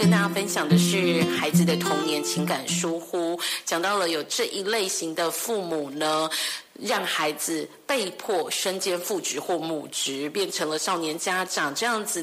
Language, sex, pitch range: Chinese, female, 160-225 Hz